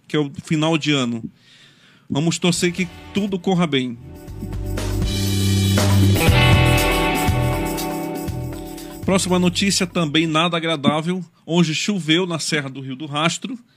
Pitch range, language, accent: 140-175 Hz, Portuguese, Brazilian